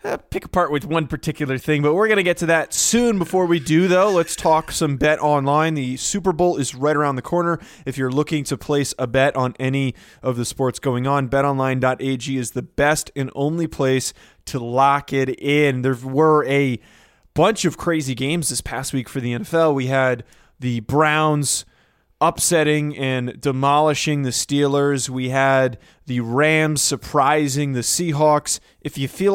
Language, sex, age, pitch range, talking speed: English, male, 20-39, 130-155 Hz, 180 wpm